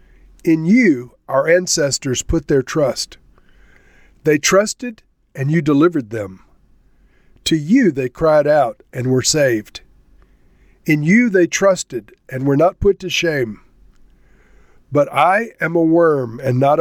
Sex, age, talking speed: male, 50-69, 135 wpm